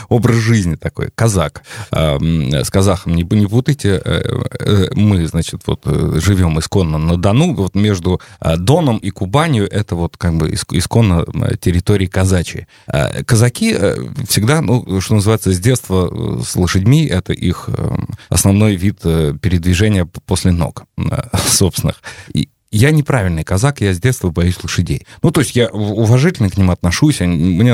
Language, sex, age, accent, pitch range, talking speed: Russian, male, 30-49, native, 90-120 Hz, 130 wpm